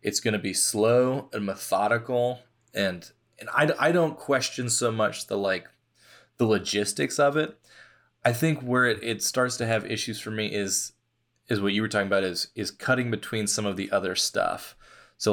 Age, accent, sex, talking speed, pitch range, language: 20-39, American, male, 190 wpm, 105-120 Hz, English